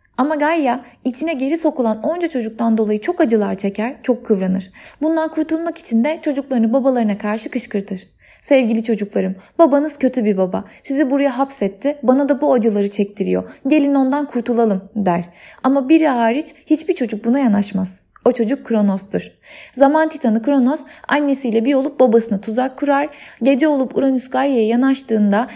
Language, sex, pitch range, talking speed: Turkish, female, 220-290 Hz, 150 wpm